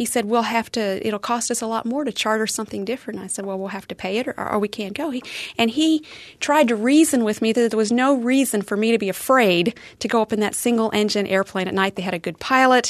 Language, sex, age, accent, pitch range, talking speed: English, female, 40-59, American, 200-255 Hz, 280 wpm